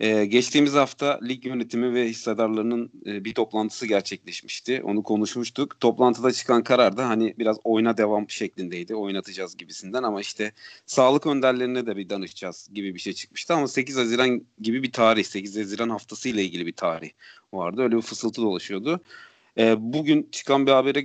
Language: Turkish